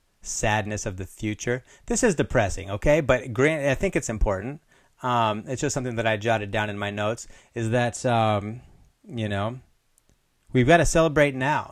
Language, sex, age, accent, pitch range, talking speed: English, male, 30-49, American, 105-130 Hz, 180 wpm